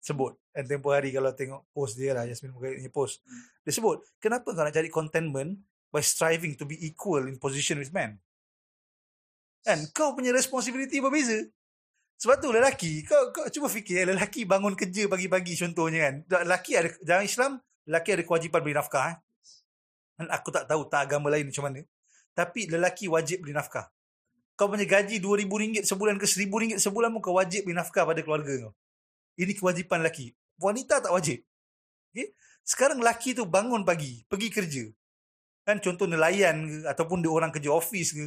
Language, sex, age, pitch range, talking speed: Malay, male, 30-49, 150-210 Hz, 175 wpm